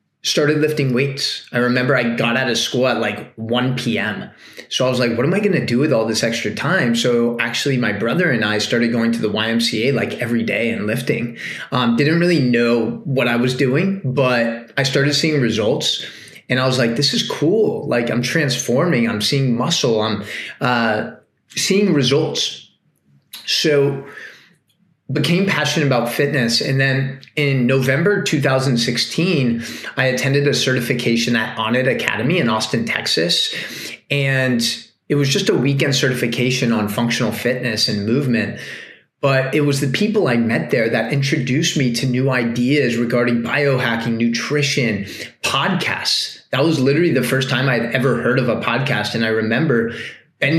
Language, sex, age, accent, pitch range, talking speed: English, male, 20-39, American, 115-140 Hz, 165 wpm